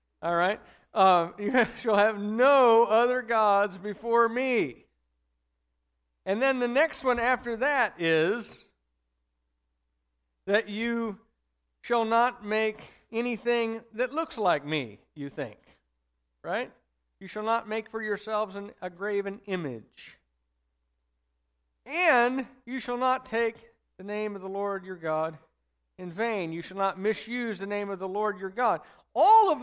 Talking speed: 140 wpm